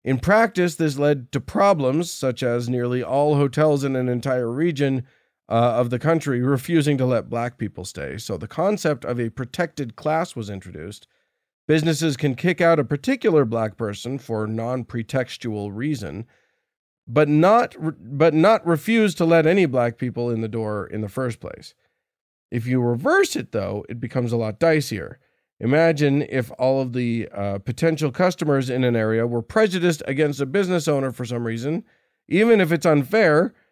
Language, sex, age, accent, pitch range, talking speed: English, male, 40-59, American, 120-160 Hz, 175 wpm